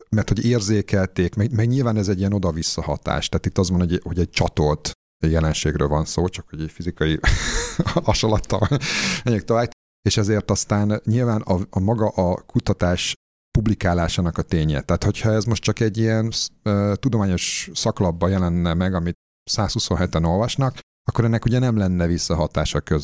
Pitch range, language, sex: 85-110 Hz, Hungarian, male